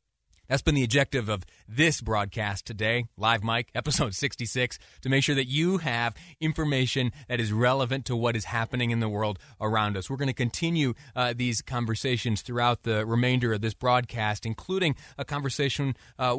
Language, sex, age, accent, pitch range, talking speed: English, male, 30-49, American, 115-150 Hz, 175 wpm